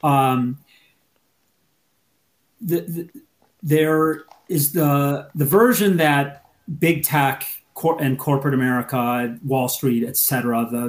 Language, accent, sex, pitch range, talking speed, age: English, American, male, 125-160 Hz, 105 wpm, 40-59